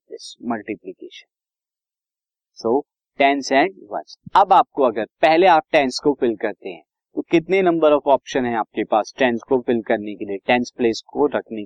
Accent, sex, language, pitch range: native, male, Hindi, 125-165 Hz